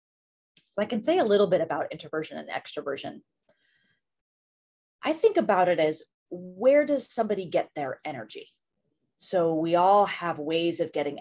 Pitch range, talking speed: 160-230 Hz, 155 wpm